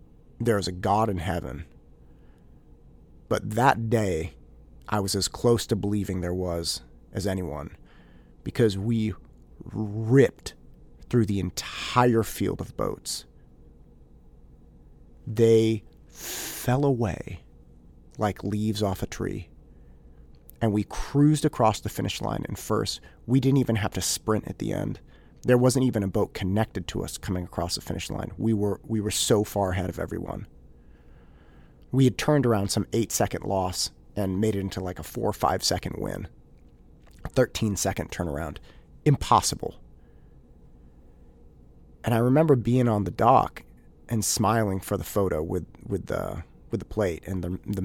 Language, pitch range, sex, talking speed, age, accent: English, 75-110 Hz, male, 145 wpm, 30-49, American